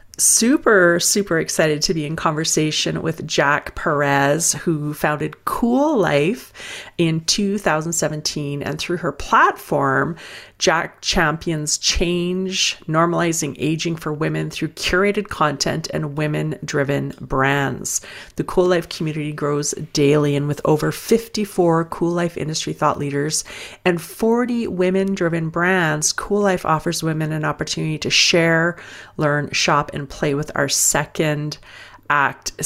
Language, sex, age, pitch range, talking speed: English, female, 30-49, 150-190 Hz, 125 wpm